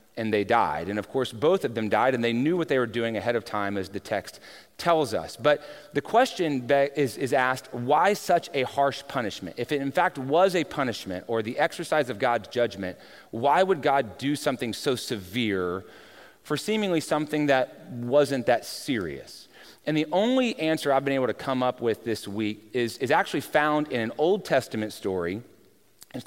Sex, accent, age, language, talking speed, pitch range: male, American, 30-49, English, 195 wpm, 115-150 Hz